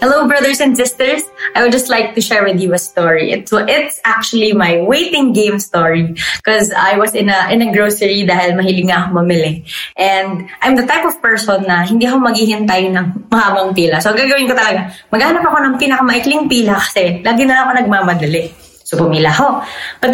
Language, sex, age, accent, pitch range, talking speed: English, female, 20-39, Filipino, 185-265 Hz, 190 wpm